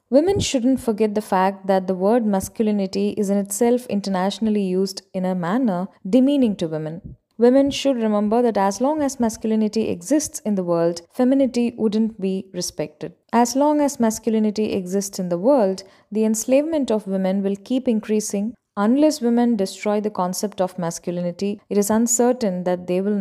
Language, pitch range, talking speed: Tamil, 190-235 Hz, 165 wpm